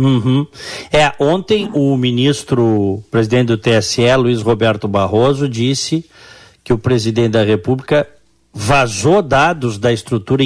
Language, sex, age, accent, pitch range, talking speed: Portuguese, male, 50-69, Brazilian, 115-160 Hz, 115 wpm